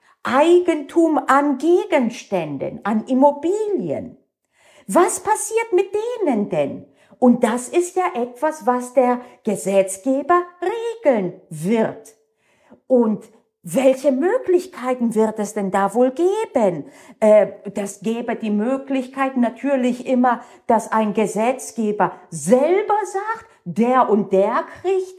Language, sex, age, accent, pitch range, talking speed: German, female, 50-69, German, 200-285 Hz, 105 wpm